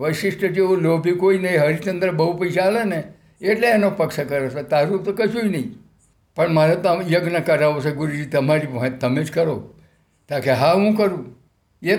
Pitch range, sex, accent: 145-185 Hz, male, native